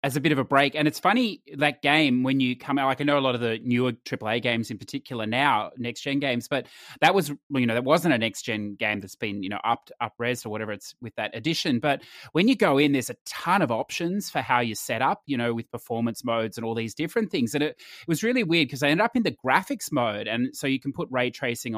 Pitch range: 125-170 Hz